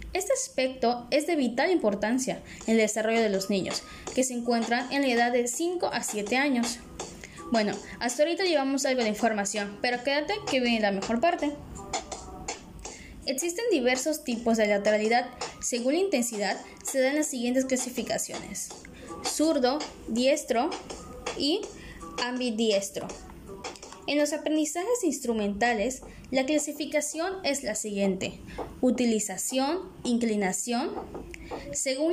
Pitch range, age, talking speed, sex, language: 225-290 Hz, 10-29, 125 wpm, female, Spanish